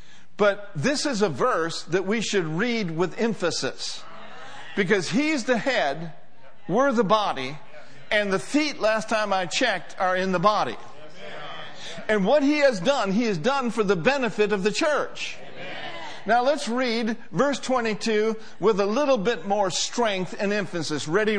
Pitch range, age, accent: 205-280 Hz, 50-69, American